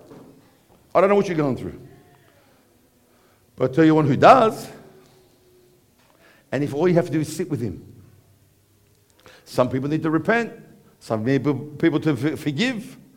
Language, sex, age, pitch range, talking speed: English, male, 50-69, 115-185 Hz, 160 wpm